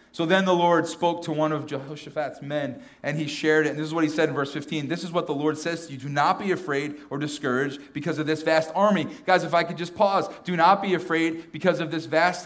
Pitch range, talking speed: 145-180 Hz, 270 wpm